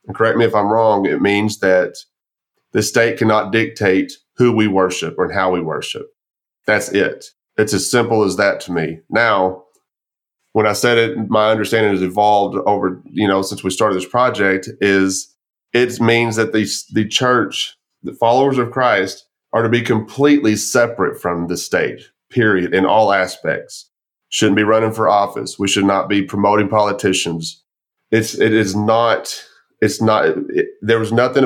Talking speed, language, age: 170 wpm, English, 30-49